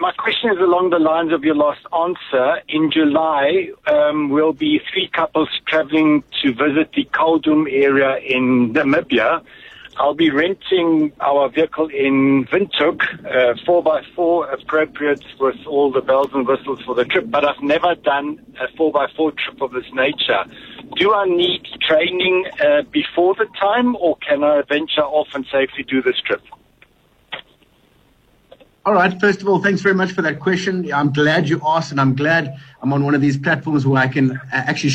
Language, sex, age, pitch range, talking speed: English, male, 60-79, 135-175 Hz, 170 wpm